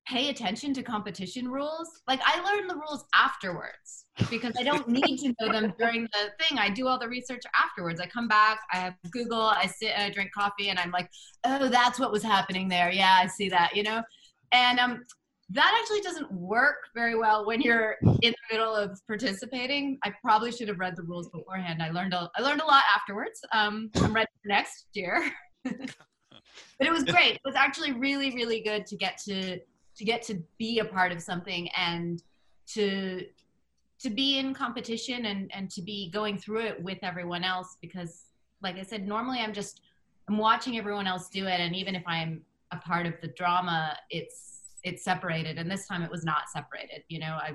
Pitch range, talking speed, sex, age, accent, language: 180-235 Hz, 205 wpm, female, 30-49, American, English